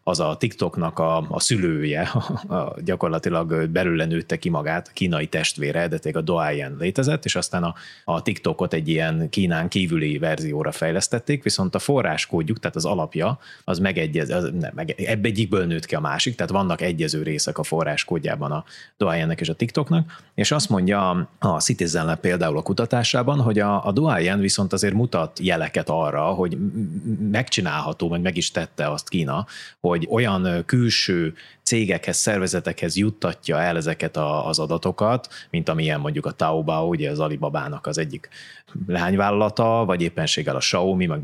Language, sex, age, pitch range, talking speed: Hungarian, male, 30-49, 85-120 Hz, 160 wpm